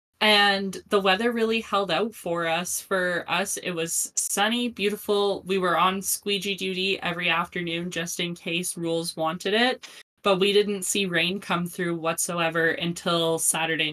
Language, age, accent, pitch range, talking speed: English, 10-29, American, 170-195 Hz, 160 wpm